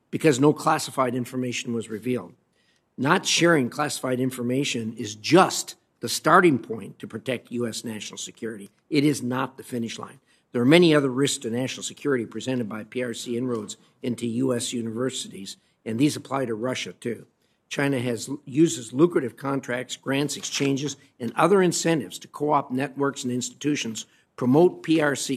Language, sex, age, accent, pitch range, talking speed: English, male, 50-69, American, 120-145 Hz, 150 wpm